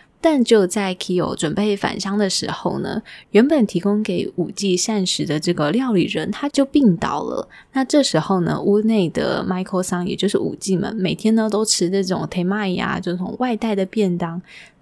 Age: 20-39